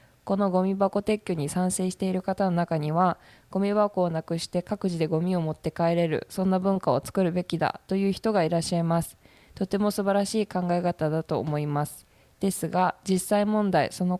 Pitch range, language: 160-185 Hz, Japanese